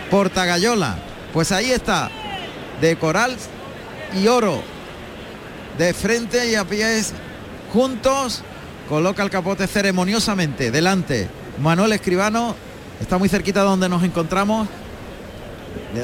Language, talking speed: Spanish, 110 wpm